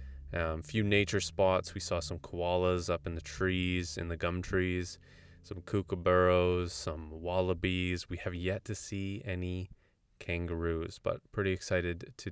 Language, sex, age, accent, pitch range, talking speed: English, male, 20-39, American, 85-95 Hz, 150 wpm